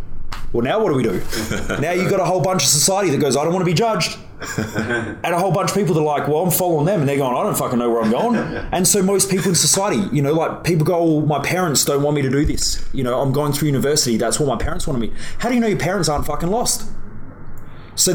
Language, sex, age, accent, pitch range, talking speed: English, male, 20-39, Australian, 120-170 Hz, 285 wpm